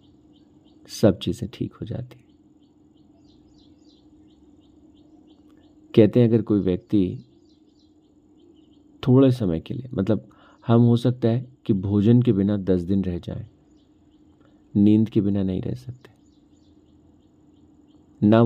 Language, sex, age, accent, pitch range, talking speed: Hindi, male, 50-69, native, 95-125 Hz, 115 wpm